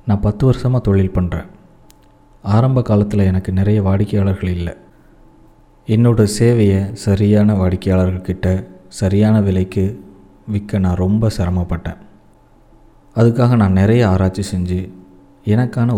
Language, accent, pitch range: Tamil, native, 95-110 Hz